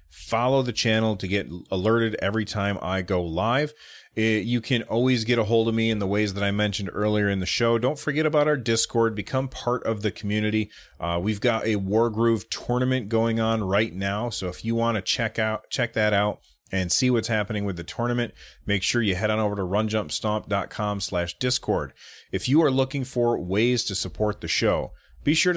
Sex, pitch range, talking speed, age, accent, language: male, 100-120 Hz, 200 wpm, 30-49, American, English